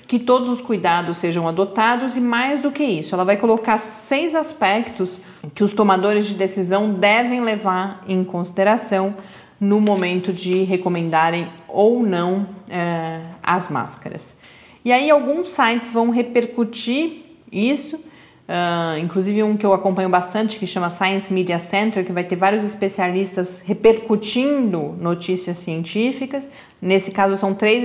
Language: Portuguese